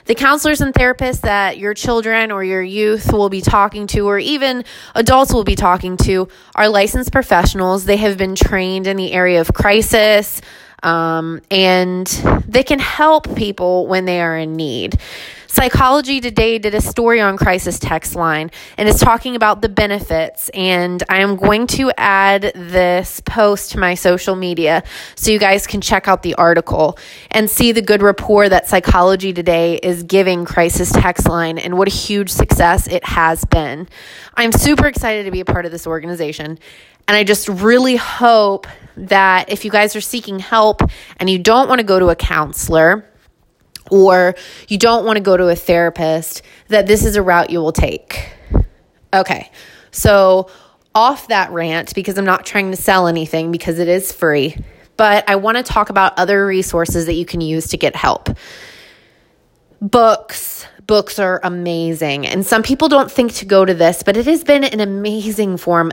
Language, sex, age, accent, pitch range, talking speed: English, female, 20-39, American, 175-215 Hz, 180 wpm